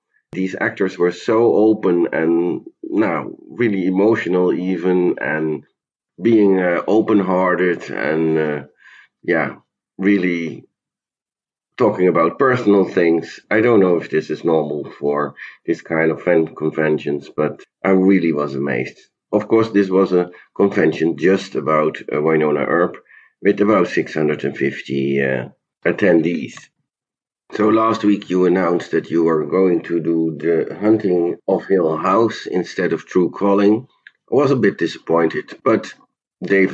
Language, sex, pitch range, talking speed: English, male, 80-100 Hz, 135 wpm